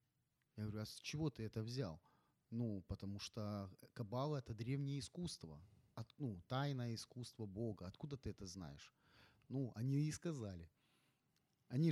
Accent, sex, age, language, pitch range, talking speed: native, male, 30-49, Ukrainian, 110-145 Hz, 150 wpm